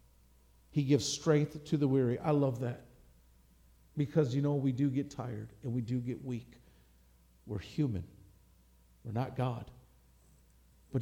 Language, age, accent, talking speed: English, 50-69, American, 145 wpm